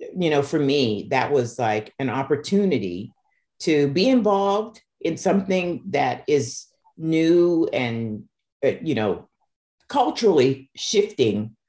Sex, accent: female, American